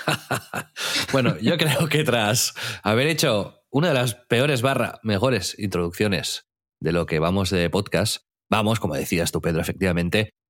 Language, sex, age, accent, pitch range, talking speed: Spanish, male, 30-49, Spanish, 90-115 Hz, 150 wpm